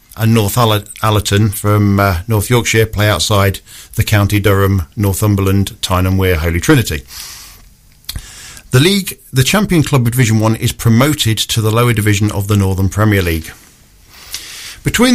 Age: 50-69